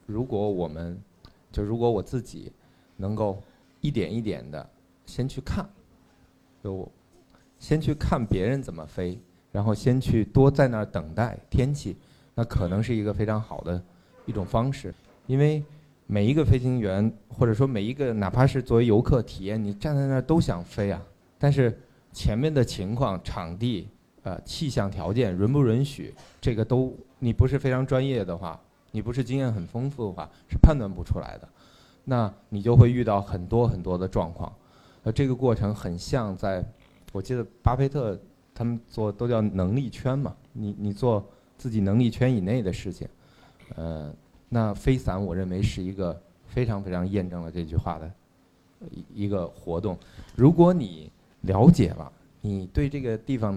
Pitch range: 95-130 Hz